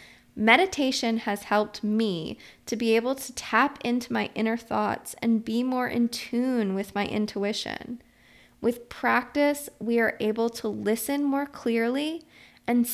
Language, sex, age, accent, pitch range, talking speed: English, female, 20-39, American, 210-250 Hz, 145 wpm